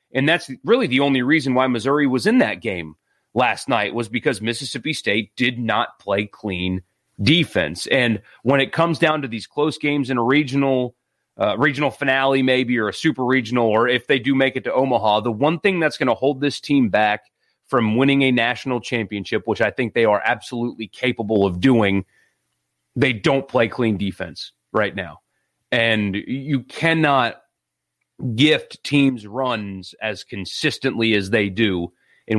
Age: 30-49